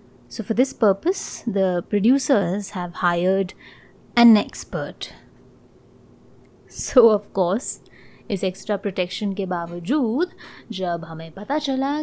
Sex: female